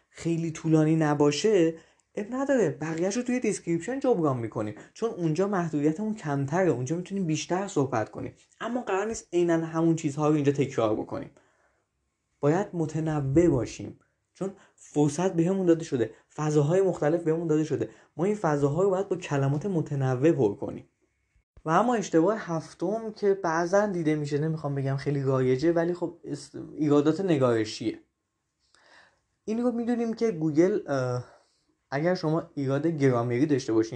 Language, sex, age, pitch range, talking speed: Persian, male, 20-39, 135-175 Hz, 140 wpm